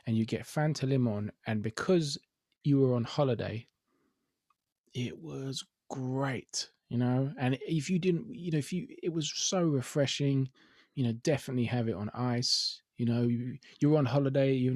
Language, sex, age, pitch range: English, male, 20-39, 115-135 Hz